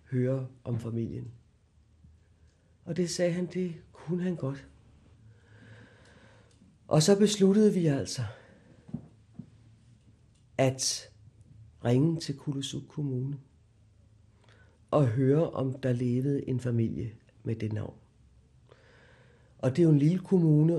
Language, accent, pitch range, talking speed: Danish, native, 110-180 Hz, 110 wpm